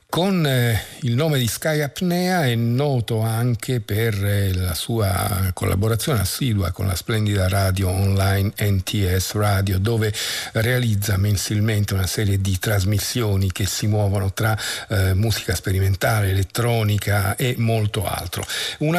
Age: 50-69